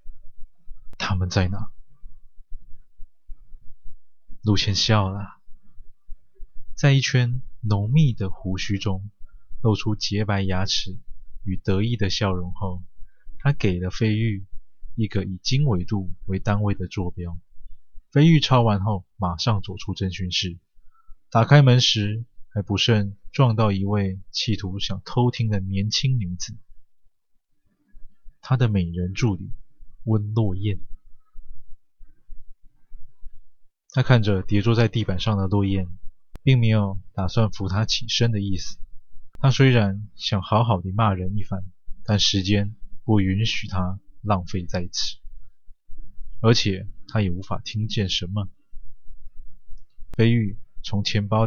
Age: 20-39